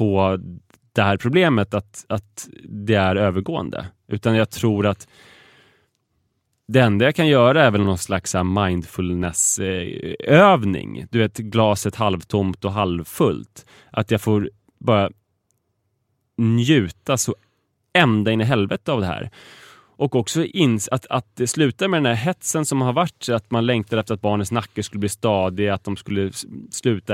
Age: 20-39